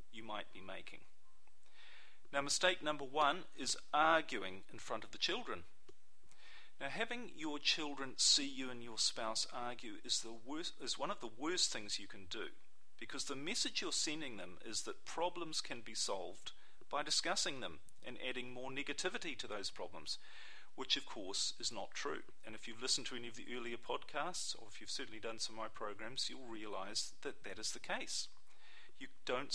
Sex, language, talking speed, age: male, English, 190 wpm, 40-59